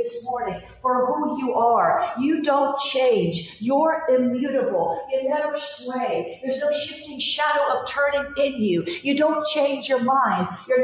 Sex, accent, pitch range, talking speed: female, American, 240-290 Hz, 155 wpm